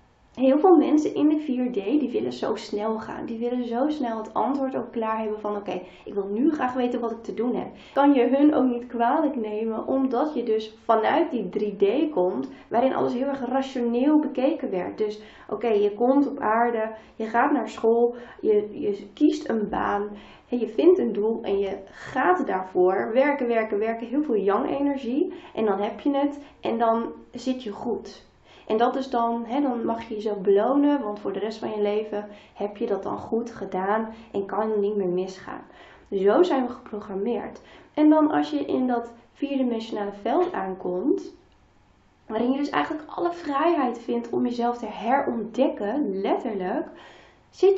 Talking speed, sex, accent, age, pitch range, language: 190 wpm, female, Dutch, 20-39, 215-280 Hz, Dutch